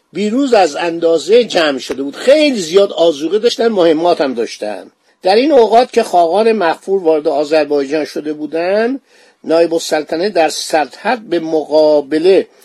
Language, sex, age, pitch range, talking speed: Persian, male, 50-69, 155-220 Hz, 140 wpm